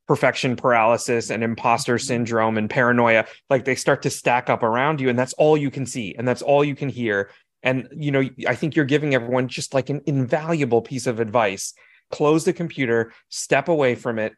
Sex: male